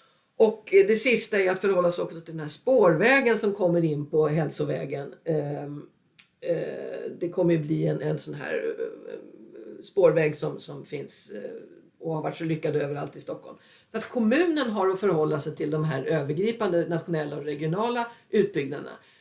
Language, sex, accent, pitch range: Swedish, female, native, 155-230 Hz